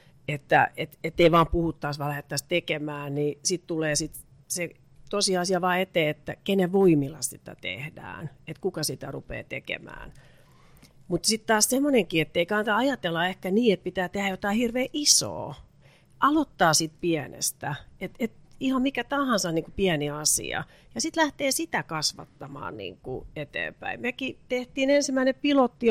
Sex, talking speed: female, 150 wpm